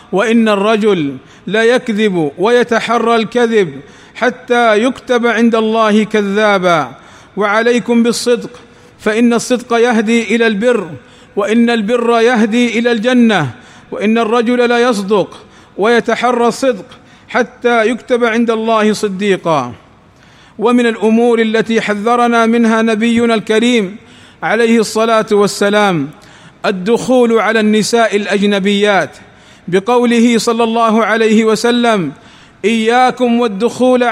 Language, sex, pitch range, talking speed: Arabic, male, 210-240 Hz, 95 wpm